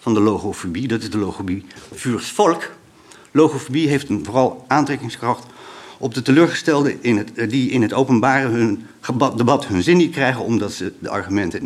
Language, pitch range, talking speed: Dutch, 110-145 Hz, 170 wpm